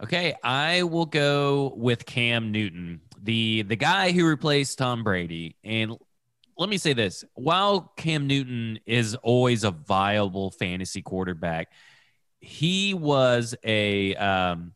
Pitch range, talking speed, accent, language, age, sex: 105-145 Hz, 130 wpm, American, English, 30-49, male